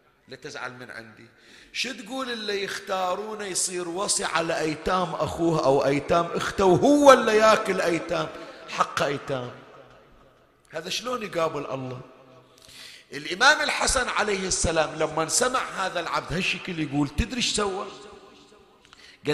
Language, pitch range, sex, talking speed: Arabic, 145-205 Hz, male, 125 wpm